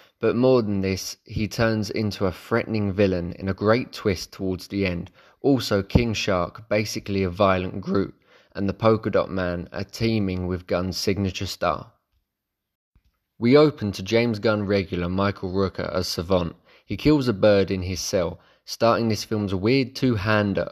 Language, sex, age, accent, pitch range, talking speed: English, male, 20-39, British, 95-115 Hz, 165 wpm